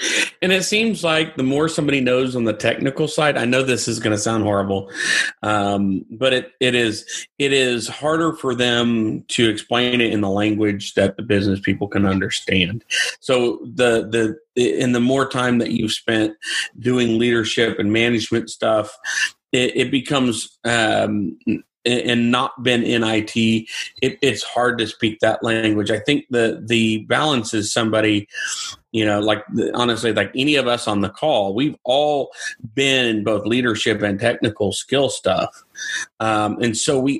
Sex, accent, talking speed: male, American, 170 wpm